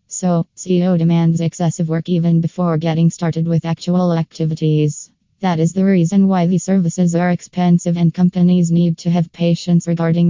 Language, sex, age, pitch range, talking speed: English, female, 20-39, 165-175 Hz, 165 wpm